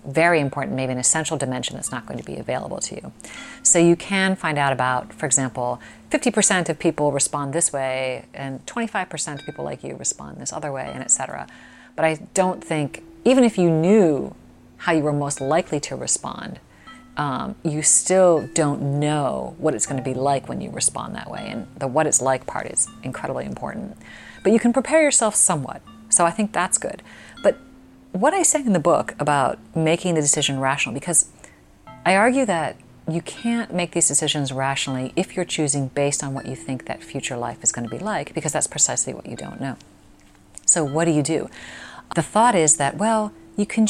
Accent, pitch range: American, 135-185 Hz